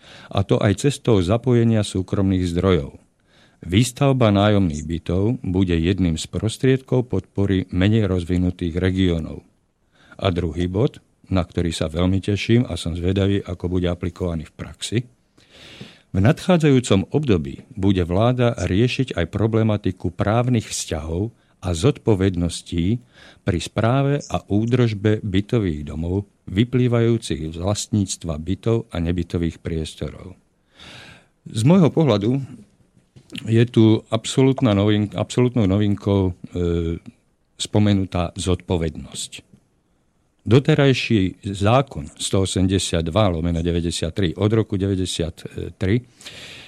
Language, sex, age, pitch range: Slovak, male, 50-69, 90-115 Hz